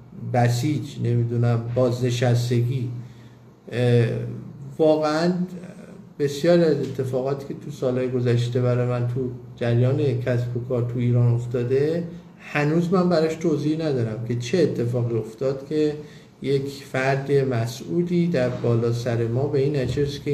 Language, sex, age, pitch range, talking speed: Persian, male, 50-69, 120-150 Hz, 120 wpm